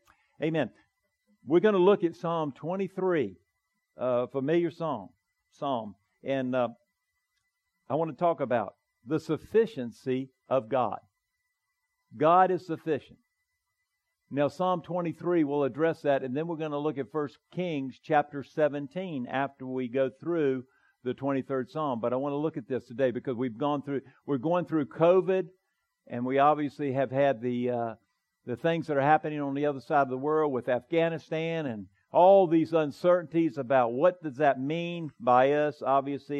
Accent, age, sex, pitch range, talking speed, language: American, 50-69, male, 130-165 Hz, 165 wpm, English